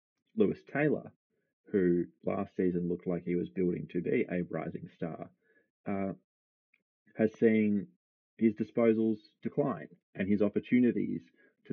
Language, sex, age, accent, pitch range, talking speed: English, male, 30-49, Australian, 90-105 Hz, 130 wpm